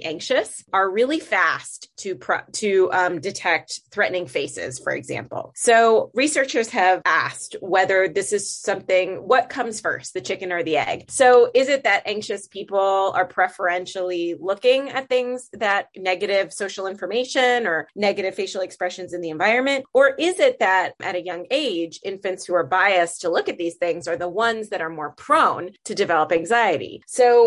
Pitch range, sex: 180-230 Hz, female